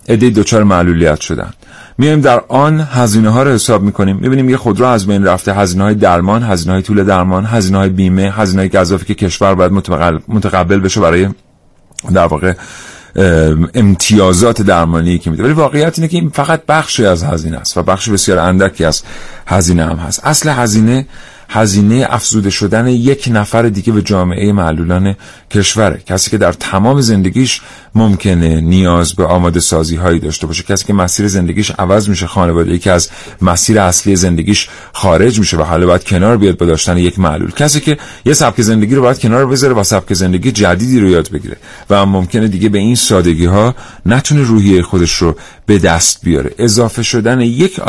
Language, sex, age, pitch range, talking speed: Persian, male, 40-59, 90-115 Hz, 180 wpm